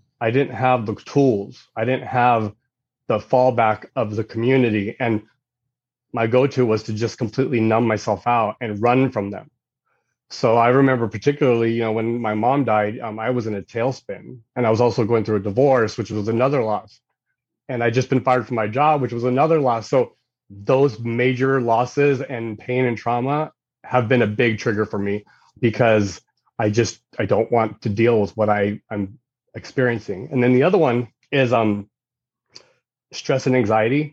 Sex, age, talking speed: male, 30-49, 185 wpm